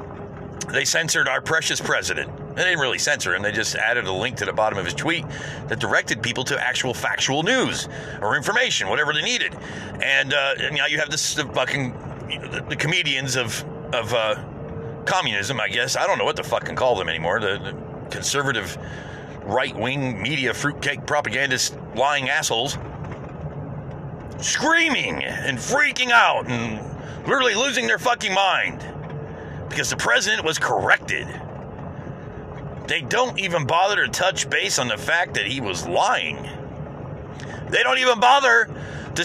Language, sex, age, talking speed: English, male, 40-59, 160 wpm